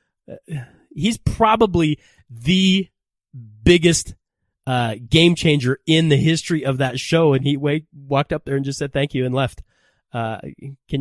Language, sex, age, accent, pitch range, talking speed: English, male, 30-49, American, 120-175 Hz, 160 wpm